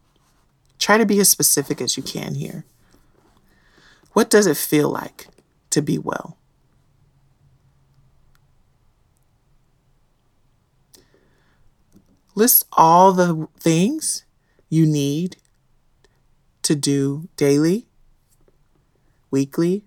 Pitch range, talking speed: 125-165 Hz, 80 wpm